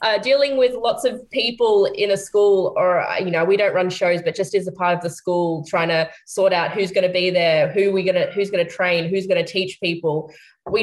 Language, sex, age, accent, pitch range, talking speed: English, female, 20-39, Australian, 155-190 Hz, 260 wpm